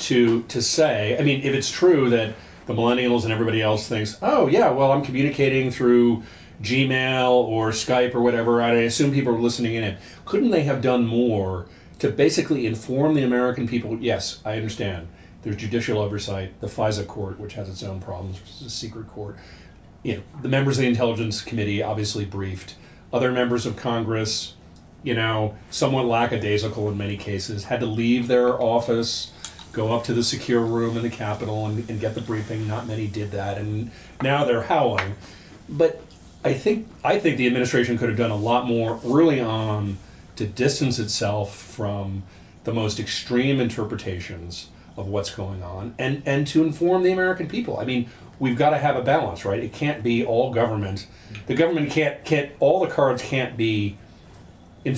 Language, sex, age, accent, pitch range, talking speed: English, male, 40-59, American, 105-125 Hz, 185 wpm